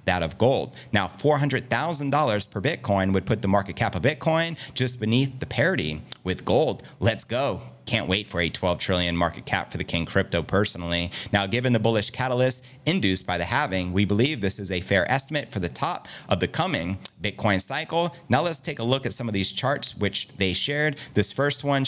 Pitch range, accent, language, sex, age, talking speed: 95-130 Hz, American, English, male, 30-49, 205 wpm